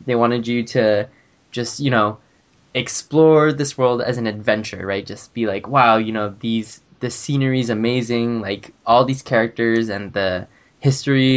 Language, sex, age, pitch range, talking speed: English, male, 10-29, 105-125 Hz, 170 wpm